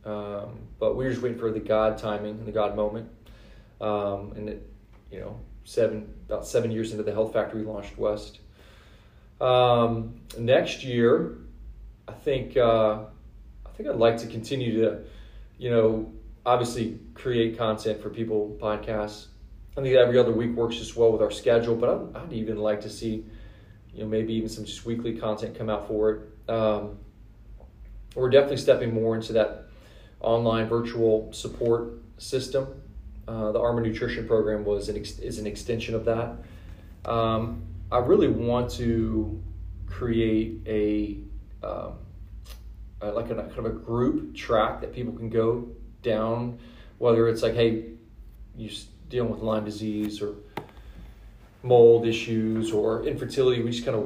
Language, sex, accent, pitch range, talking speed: English, male, American, 105-115 Hz, 160 wpm